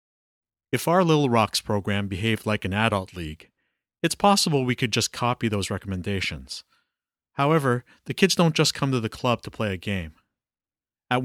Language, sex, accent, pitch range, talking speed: English, male, American, 105-135 Hz, 170 wpm